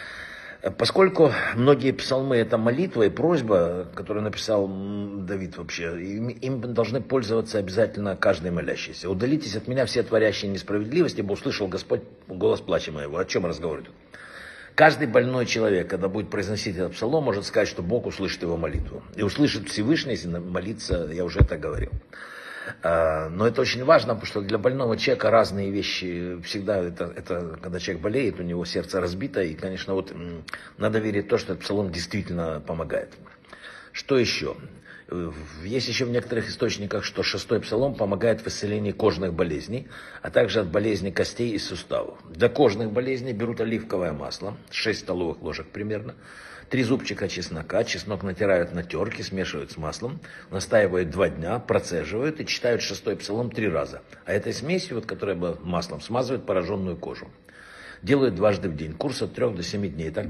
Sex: male